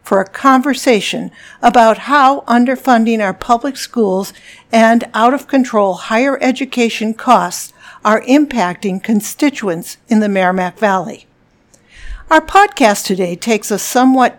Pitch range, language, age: 205-260 Hz, English, 60-79